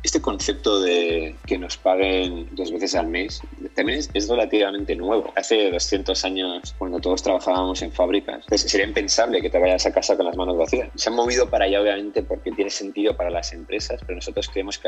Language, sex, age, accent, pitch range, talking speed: Spanish, male, 20-39, Spanish, 90-100 Hz, 205 wpm